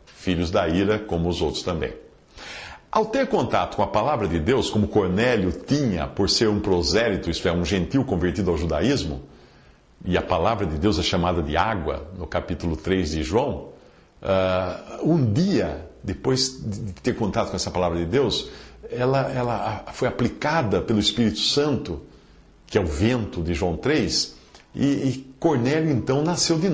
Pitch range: 90-145 Hz